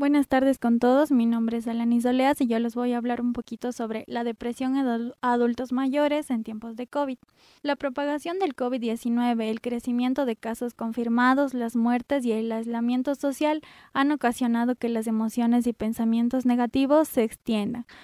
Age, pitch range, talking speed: 20-39, 230-260 Hz, 175 wpm